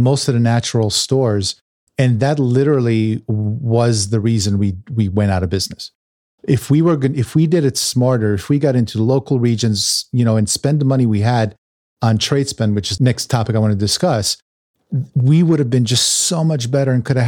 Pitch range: 110-135 Hz